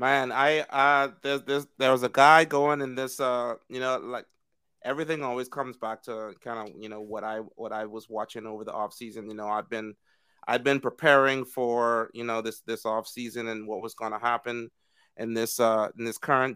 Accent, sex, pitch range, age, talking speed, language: American, male, 115-135 Hz, 30-49, 225 wpm, English